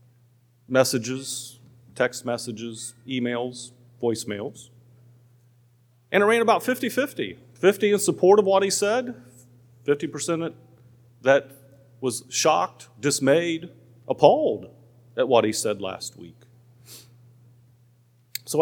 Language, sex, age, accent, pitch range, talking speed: English, male, 40-59, American, 120-165 Hz, 100 wpm